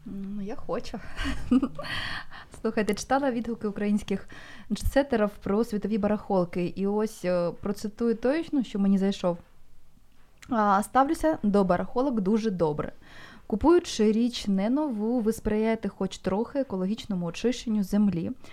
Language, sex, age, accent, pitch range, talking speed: Ukrainian, female, 20-39, native, 175-225 Hz, 115 wpm